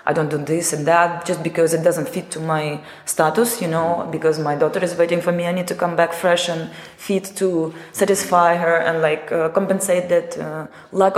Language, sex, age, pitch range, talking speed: English, female, 20-39, 160-185 Hz, 220 wpm